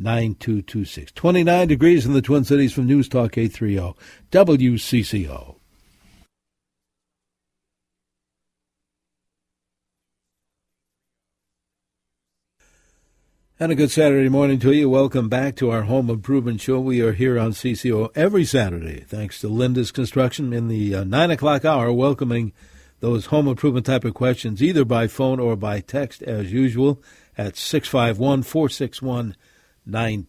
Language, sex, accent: English, male, American